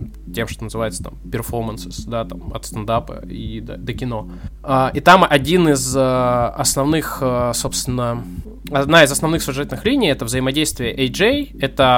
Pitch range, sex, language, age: 115-140 Hz, male, Russian, 20-39